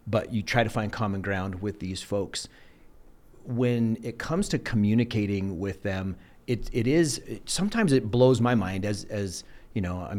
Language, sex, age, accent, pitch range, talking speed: English, male, 40-59, American, 100-130 Hz, 185 wpm